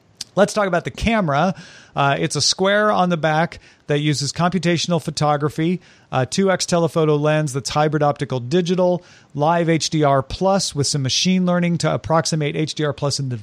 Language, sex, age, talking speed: English, male, 40-59, 160 wpm